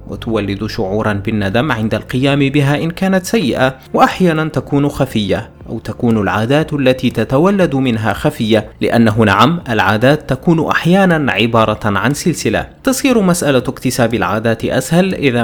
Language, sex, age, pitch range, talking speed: Arabic, male, 30-49, 110-150 Hz, 130 wpm